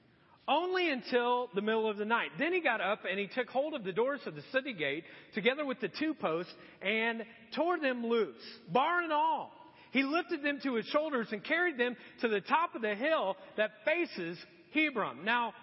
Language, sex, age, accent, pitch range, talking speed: English, male, 40-59, American, 215-290 Hz, 205 wpm